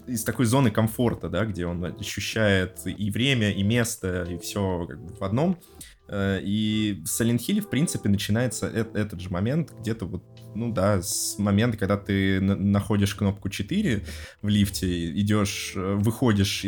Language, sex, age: Russian, male, 20-39